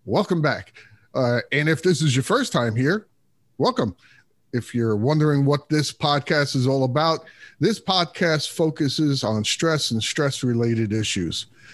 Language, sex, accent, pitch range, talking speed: English, male, American, 125-165 Hz, 150 wpm